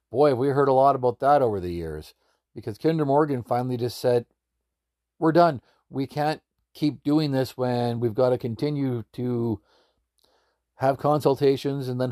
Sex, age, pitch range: male, 50-69, 110-140 Hz